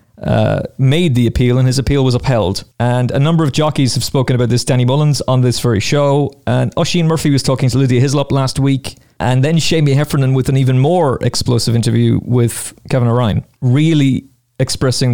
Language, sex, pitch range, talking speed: English, male, 115-140 Hz, 195 wpm